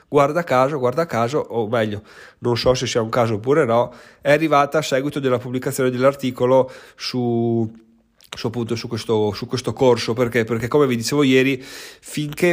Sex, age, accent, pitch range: male, 30-49, native, 115-140 Hz